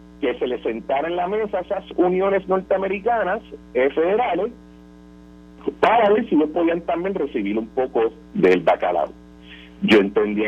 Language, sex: Spanish, male